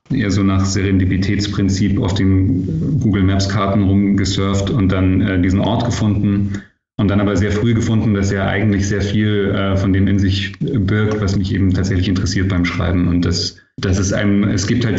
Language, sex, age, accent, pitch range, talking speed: German, male, 30-49, German, 95-105 Hz, 180 wpm